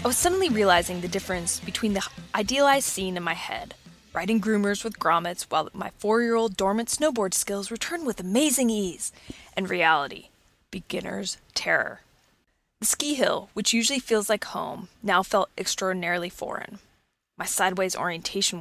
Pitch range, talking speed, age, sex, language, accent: 165-225 Hz, 150 wpm, 20-39, female, English, American